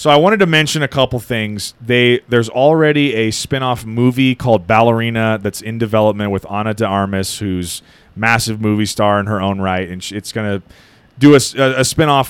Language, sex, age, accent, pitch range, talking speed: English, male, 30-49, American, 105-130 Hz, 190 wpm